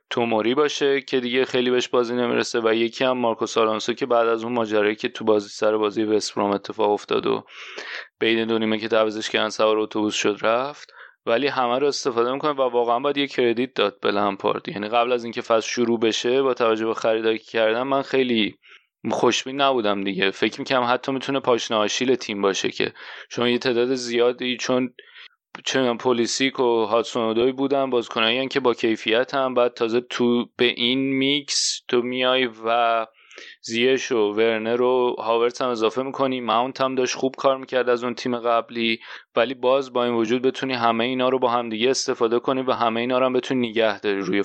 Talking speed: 185 wpm